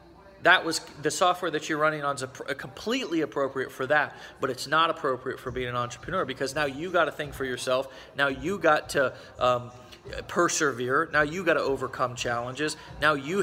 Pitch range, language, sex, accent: 125-160 Hz, English, male, American